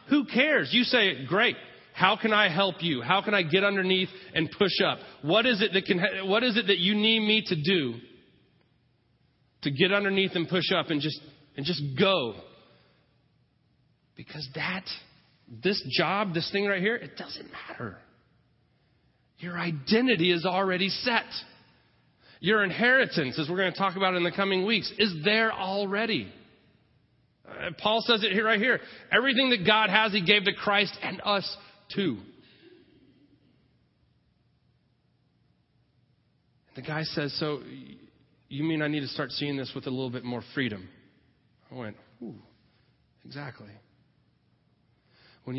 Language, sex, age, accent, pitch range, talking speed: English, male, 30-49, American, 130-200 Hz, 150 wpm